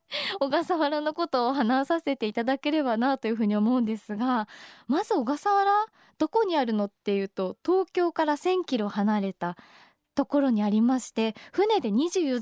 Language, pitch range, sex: Japanese, 225-310 Hz, female